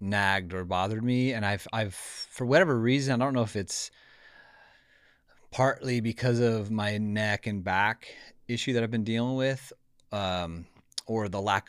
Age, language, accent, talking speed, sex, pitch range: 30-49, English, American, 165 wpm, male, 95-115 Hz